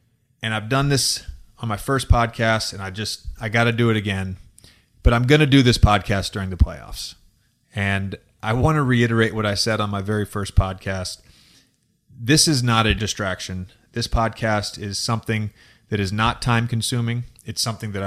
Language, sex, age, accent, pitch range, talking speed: English, male, 30-49, American, 105-125 Hz, 190 wpm